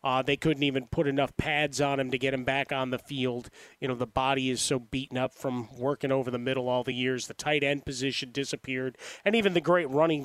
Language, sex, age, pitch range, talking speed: English, male, 30-49, 130-155 Hz, 245 wpm